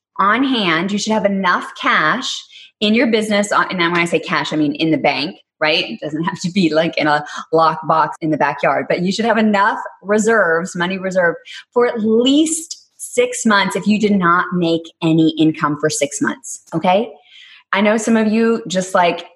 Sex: female